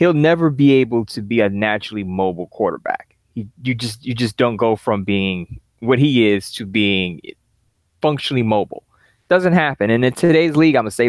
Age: 20-39